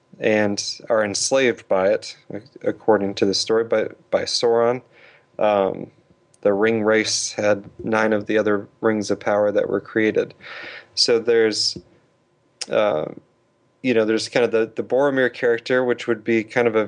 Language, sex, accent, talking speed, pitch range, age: English, male, American, 160 wpm, 105-120 Hz, 20-39